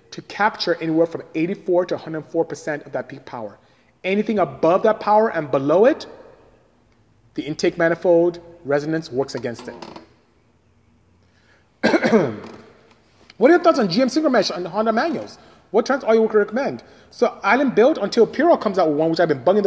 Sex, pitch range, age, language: male, 155-220 Hz, 30-49, English